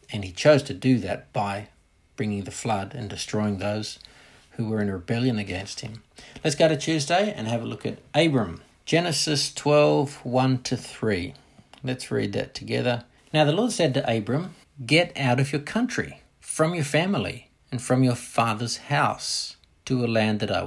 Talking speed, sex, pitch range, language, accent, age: 175 wpm, male, 110-140 Hz, English, Australian, 60-79